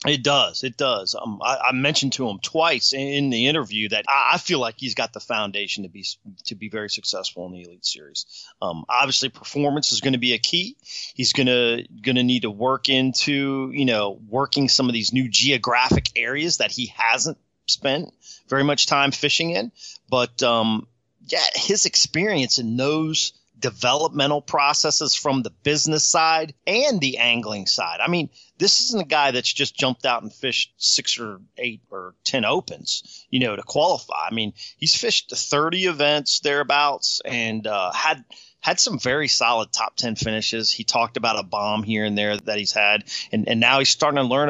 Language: English